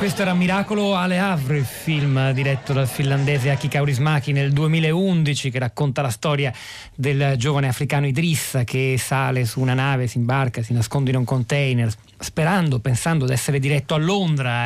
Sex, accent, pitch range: male, native, 120-140 Hz